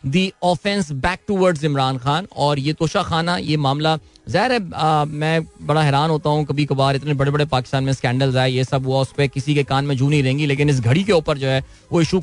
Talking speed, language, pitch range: 245 wpm, Hindi, 140-180 Hz